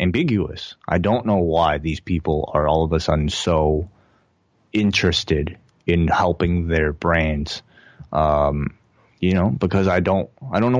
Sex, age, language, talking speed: male, 20-39, English, 150 wpm